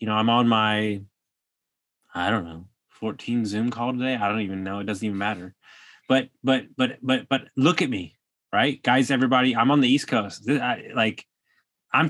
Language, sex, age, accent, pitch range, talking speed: English, male, 20-39, American, 115-150 Hz, 200 wpm